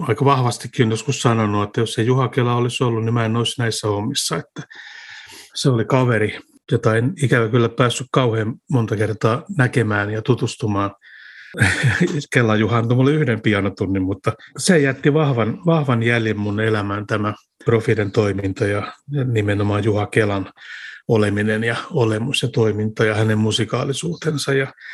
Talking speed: 145 wpm